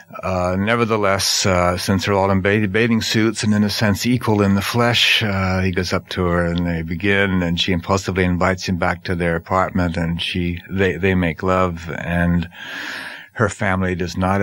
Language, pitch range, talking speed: English, 85-100 Hz, 190 wpm